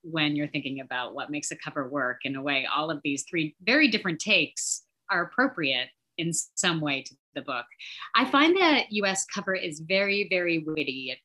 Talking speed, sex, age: 195 wpm, female, 30-49